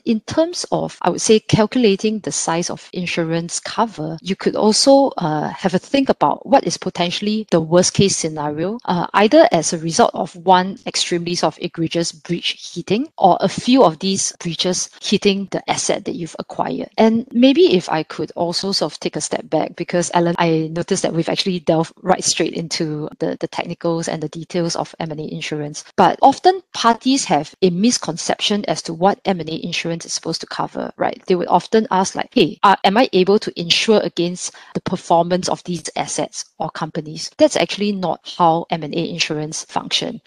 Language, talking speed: English, 190 wpm